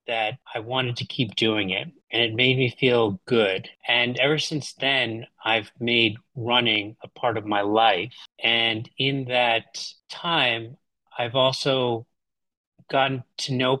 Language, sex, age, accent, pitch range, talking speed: English, male, 30-49, American, 110-130 Hz, 150 wpm